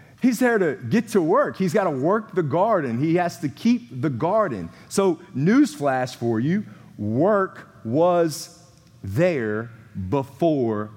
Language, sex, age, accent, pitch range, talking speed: English, male, 40-59, American, 120-175 Hz, 140 wpm